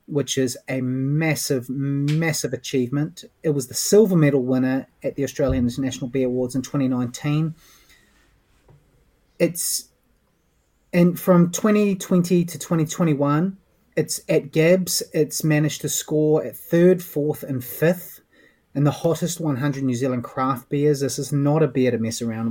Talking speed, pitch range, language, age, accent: 160 wpm, 130-165 Hz, English, 30-49, Australian